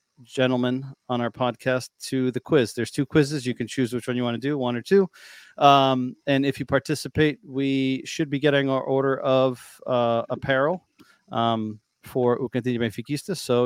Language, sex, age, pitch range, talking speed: English, male, 30-49, 115-135 Hz, 170 wpm